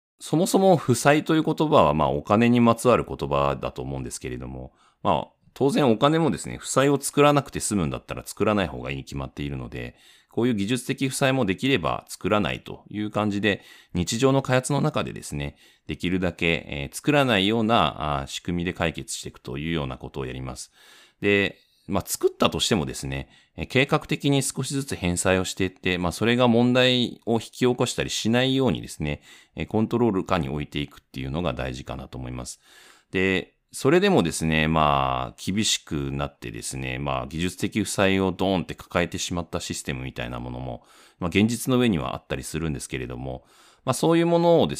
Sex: male